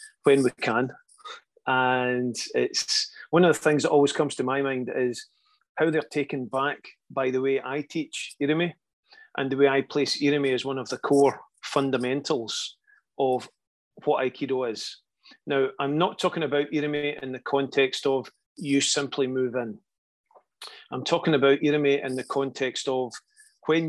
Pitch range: 130-155 Hz